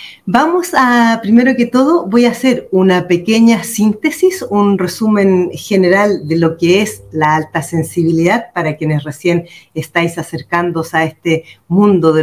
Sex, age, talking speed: female, 40-59, 145 wpm